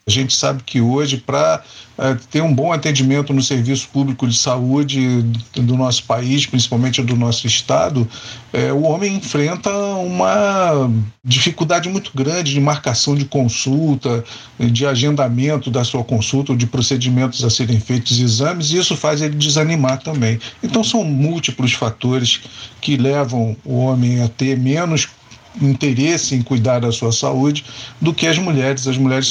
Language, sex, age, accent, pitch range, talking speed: Portuguese, male, 40-59, Brazilian, 120-145 Hz, 150 wpm